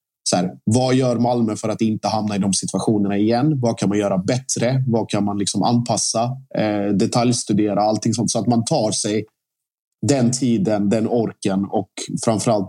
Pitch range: 105-120 Hz